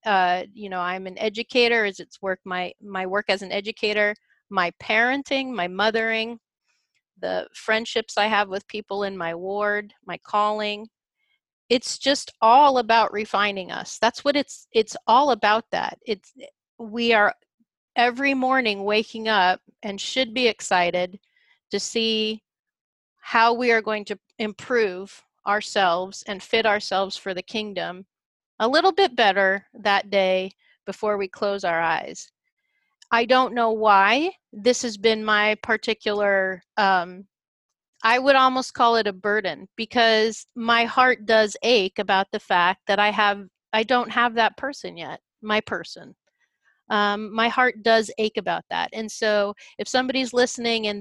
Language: English